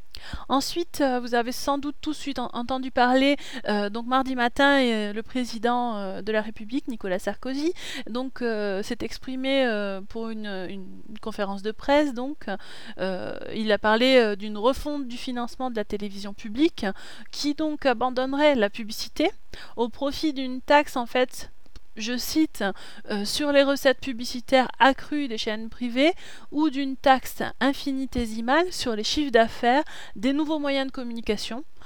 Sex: female